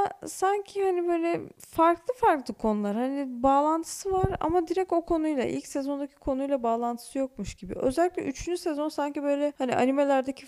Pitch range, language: 215-275 Hz, Turkish